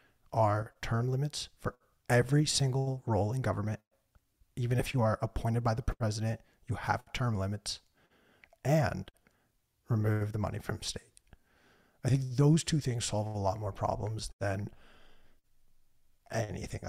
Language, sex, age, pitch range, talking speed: English, male, 30-49, 105-125 Hz, 140 wpm